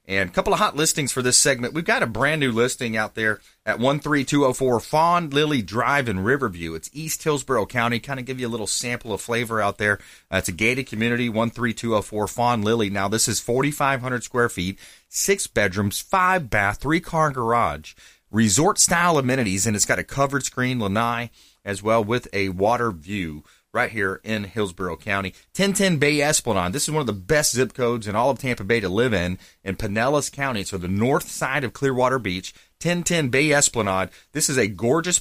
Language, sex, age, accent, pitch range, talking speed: English, male, 30-49, American, 105-145 Hz, 195 wpm